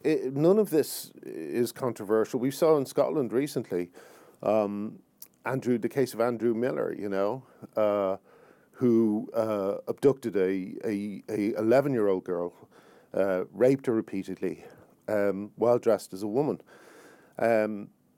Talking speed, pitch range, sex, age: 130 wpm, 105-130 Hz, male, 50-69